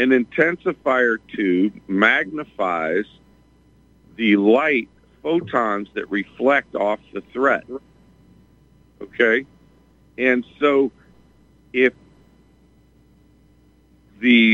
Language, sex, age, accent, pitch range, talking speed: English, male, 50-69, American, 75-130 Hz, 70 wpm